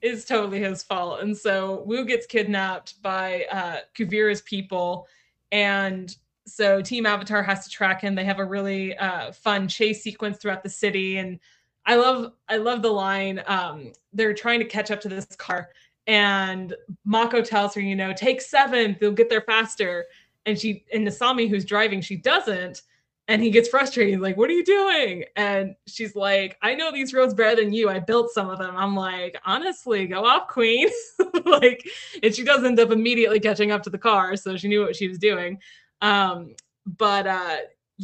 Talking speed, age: 190 wpm, 20-39